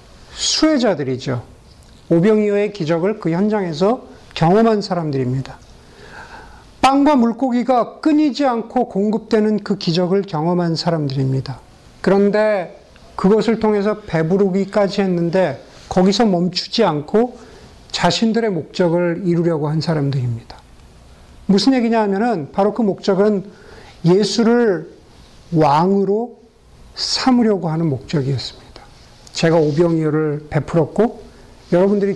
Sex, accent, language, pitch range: male, native, Korean, 160-220 Hz